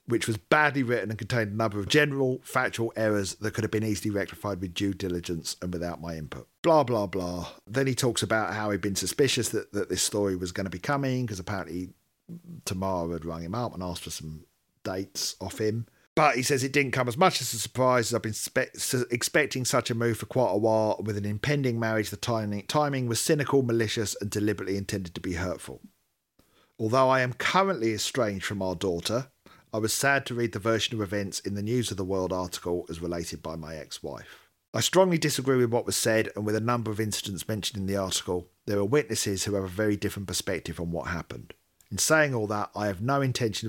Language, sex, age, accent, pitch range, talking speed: English, male, 50-69, British, 95-120 Hz, 225 wpm